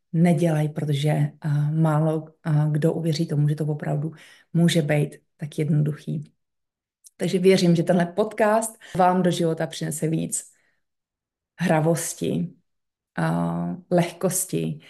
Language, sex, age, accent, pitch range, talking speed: Czech, female, 30-49, native, 155-180 Hz, 100 wpm